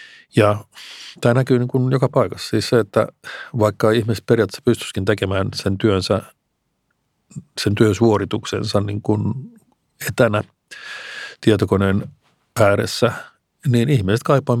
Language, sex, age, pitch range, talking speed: Finnish, male, 50-69, 105-125 Hz, 105 wpm